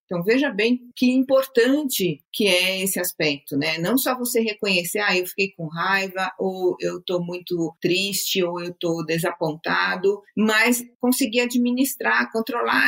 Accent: Brazilian